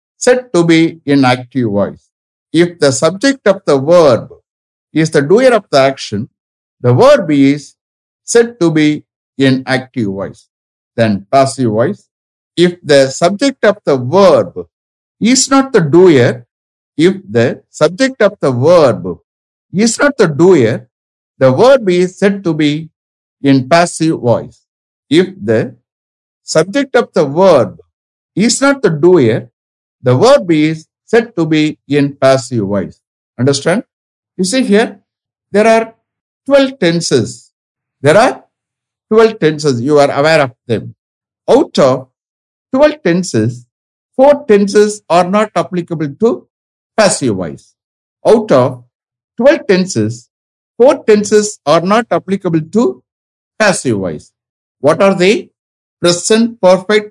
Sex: male